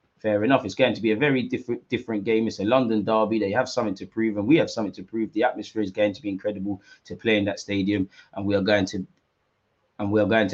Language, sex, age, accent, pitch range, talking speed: English, male, 20-39, British, 100-115 Hz, 275 wpm